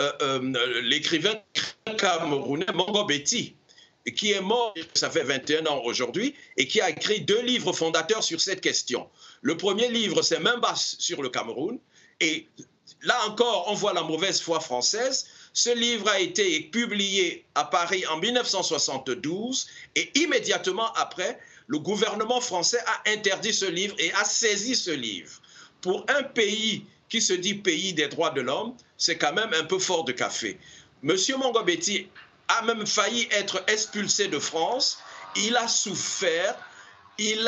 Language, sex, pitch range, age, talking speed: French, male, 185-240 Hz, 50-69, 160 wpm